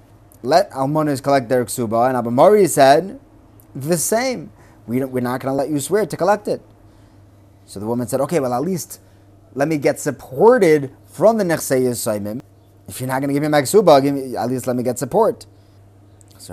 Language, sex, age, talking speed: English, male, 30-49, 205 wpm